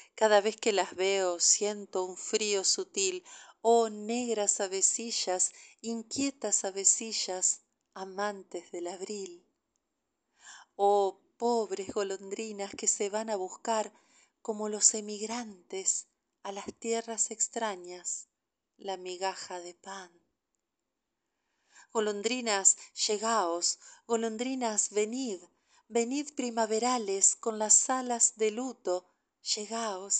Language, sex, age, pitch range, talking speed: Spanish, female, 40-59, 190-235 Hz, 95 wpm